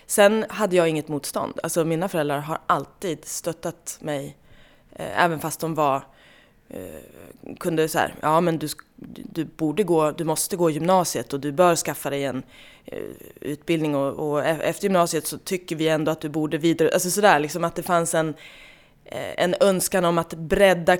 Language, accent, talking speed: Swedish, native, 185 wpm